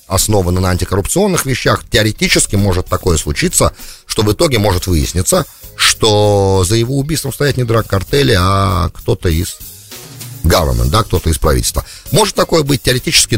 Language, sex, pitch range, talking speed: English, male, 85-110 Hz, 150 wpm